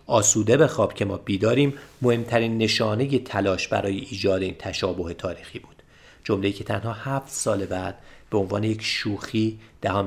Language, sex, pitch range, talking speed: Persian, male, 100-125 Hz, 155 wpm